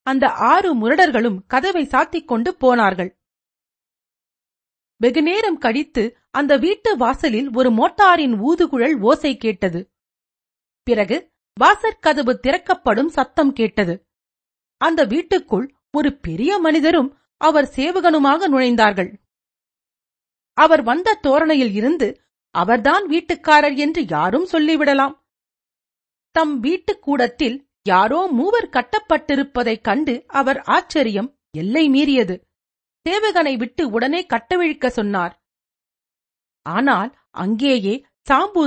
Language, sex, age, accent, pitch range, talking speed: Tamil, female, 40-59, native, 235-315 Hz, 90 wpm